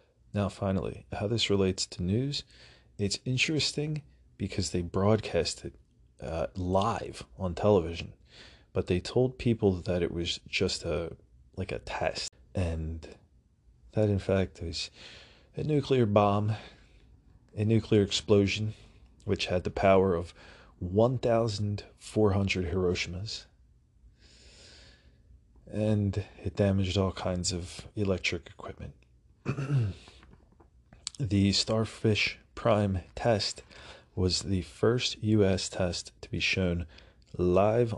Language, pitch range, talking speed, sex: English, 85-105 Hz, 110 wpm, male